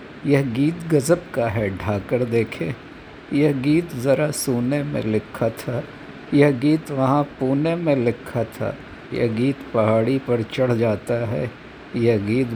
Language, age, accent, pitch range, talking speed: Hindi, 60-79, native, 115-150 Hz, 145 wpm